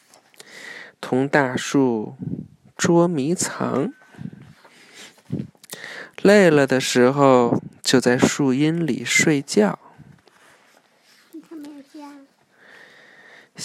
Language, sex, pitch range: Chinese, male, 125-180 Hz